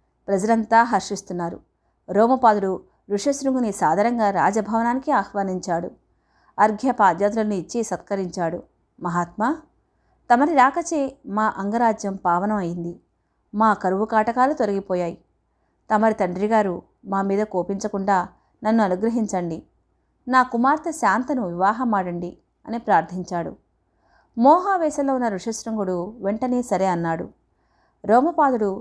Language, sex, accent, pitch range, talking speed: Telugu, female, native, 190-250 Hz, 85 wpm